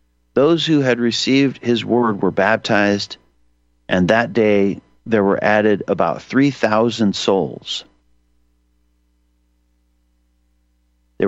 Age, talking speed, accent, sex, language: 50-69, 95 wpm, American, male, English